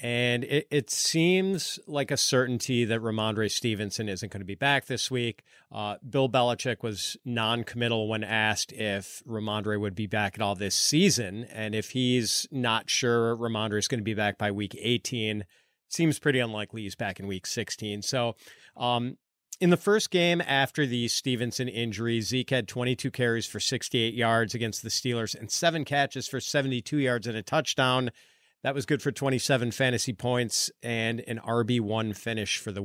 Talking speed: 175 wpm